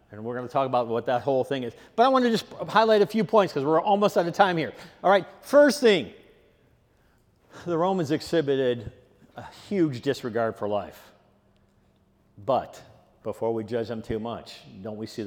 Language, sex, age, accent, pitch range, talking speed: English, male, 50-69, American, 110-175 Hz, 195 wpm